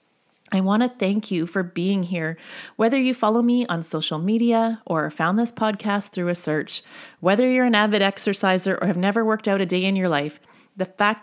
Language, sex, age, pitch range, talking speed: English, female, 30-49, 170-230 Hz, 210 wpm